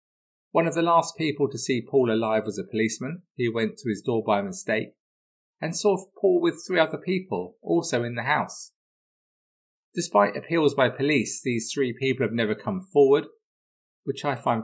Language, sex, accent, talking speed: English, male, British, 180 wpm